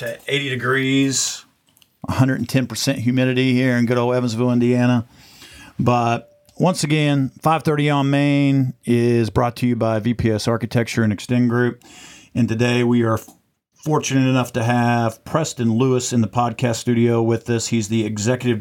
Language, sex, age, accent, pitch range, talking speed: English, male, 50-69, American, 115-135 Hz, 150 wpm